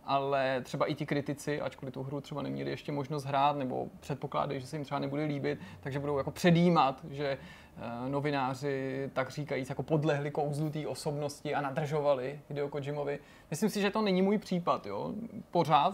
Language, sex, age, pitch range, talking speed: Czech, male, 30-49, 140-160 Hz, 170 wpm